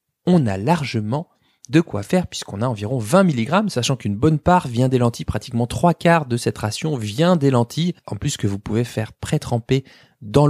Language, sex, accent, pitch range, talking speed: French, male, French, 110-160 Hz, 200 wpm